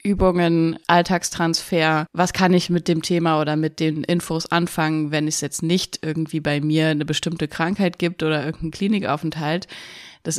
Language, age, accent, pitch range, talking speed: German, 20-39, German, 165-205 Hz, 160 wpm